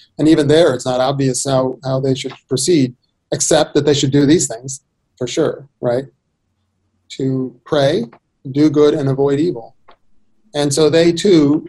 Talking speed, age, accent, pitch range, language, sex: 165 wpm, 40-59, American, 130-165 Hz, English, male